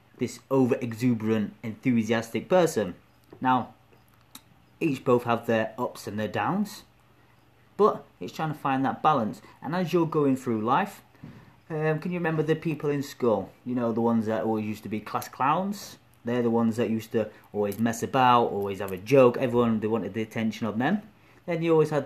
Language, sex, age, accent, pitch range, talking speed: English, male, 30-49, British, 110-140 Hz, 190 wpm